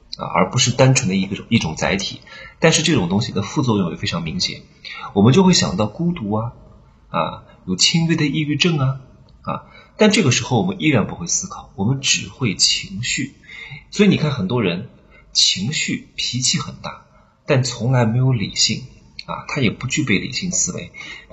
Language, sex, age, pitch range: Chinese, male, 30-49, 105-170 Hz